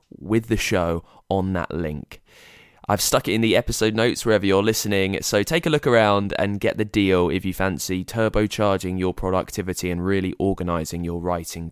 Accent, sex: British, male